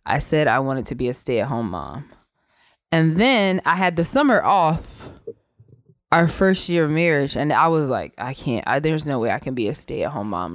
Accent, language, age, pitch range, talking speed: American, English, 20-39, 145-170 Hz, 205 wpm